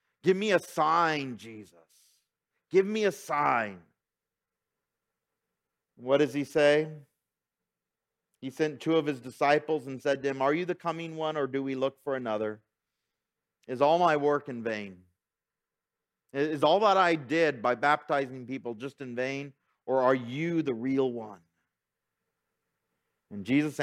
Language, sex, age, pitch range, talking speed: English, male, 50-69, 115-155 Hz, 150 wpm